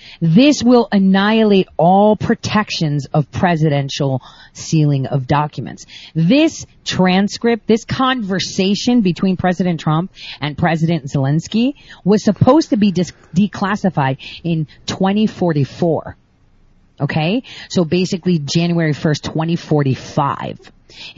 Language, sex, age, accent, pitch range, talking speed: English, female, 40-59, American, 165-220 Hz, 95 wpm